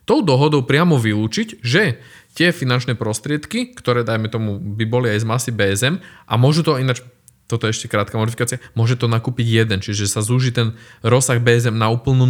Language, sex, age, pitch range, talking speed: Slovak, male, 20-39, 115-140 Hz, 185 wpm